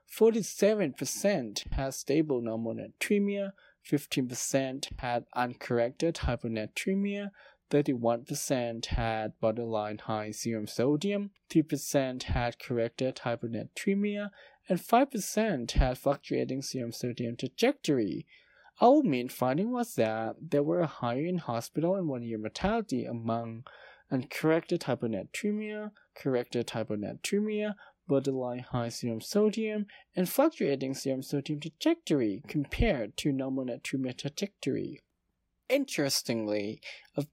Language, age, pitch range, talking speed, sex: English, 20-39, 120-190 Hz, 105 wpm, male